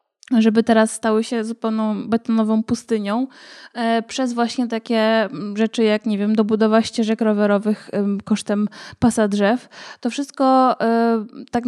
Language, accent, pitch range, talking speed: Polish, native, 210-235 Hz, 120 wpm